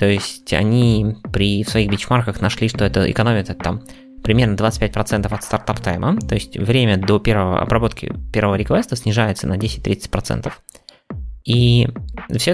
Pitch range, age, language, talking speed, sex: 95-125 Hz, 20-39, Russian, 150 wpm, male